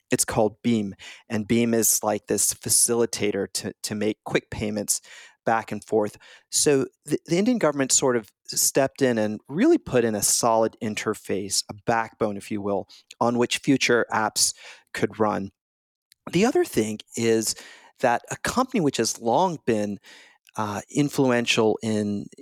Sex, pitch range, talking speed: male, 110-130 Hz, 155 wpm